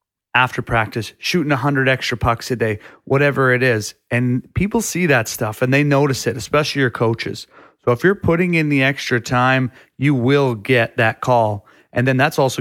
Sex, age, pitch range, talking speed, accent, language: male, 30-49, 115-135 Hz, 195 wpm, American, English